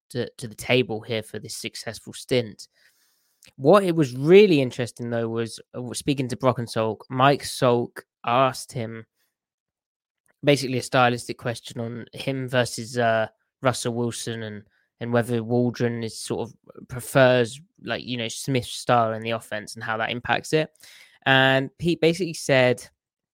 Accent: British